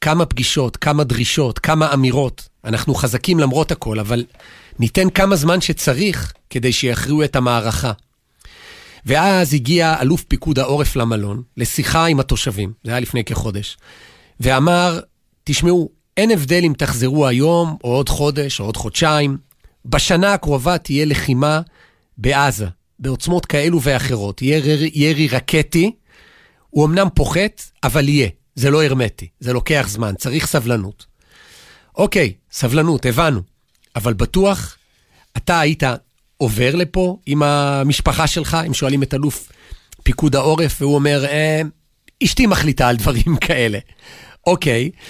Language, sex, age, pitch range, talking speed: Hebrew, male, 40-59, 125-165 Hz, 130 wpm